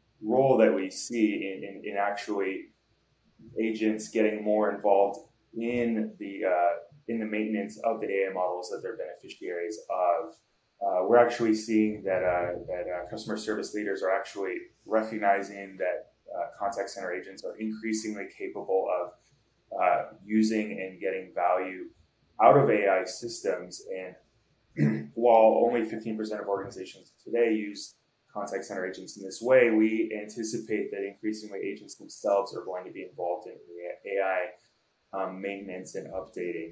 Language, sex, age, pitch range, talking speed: English, male, 20-39, 100-120 Hz, 145 wpm